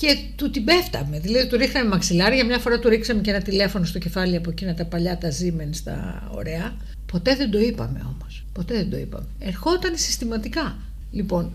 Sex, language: female, Greek